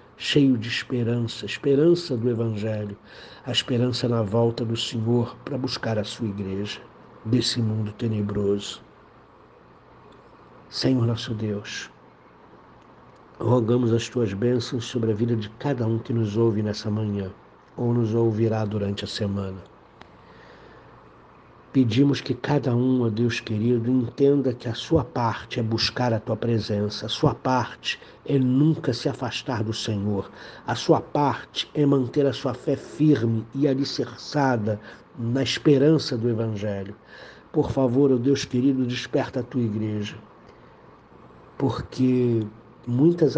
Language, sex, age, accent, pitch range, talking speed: Portuguese, male, 60-79, Brazilian, 110-130 Hz, 135 wpm